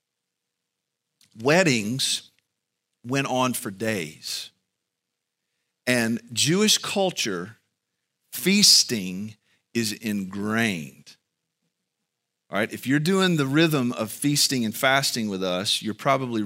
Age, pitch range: 40-59, 110-165 Hz